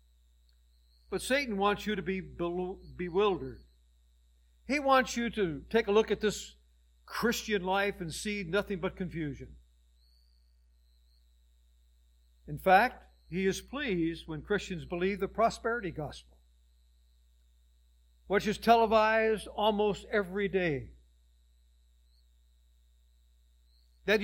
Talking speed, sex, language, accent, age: 100 wpm, male, English, American, 60-79